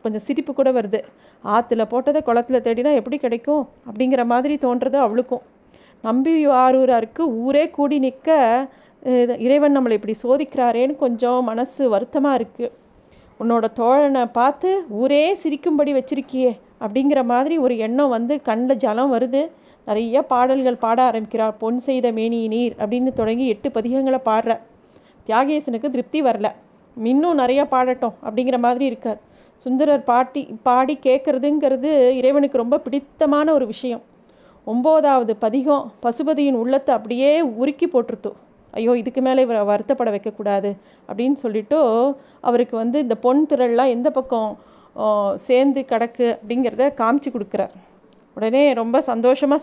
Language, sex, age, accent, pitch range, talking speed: Tamil, female, 30-49, native, 230-275 Hz, 125 wpm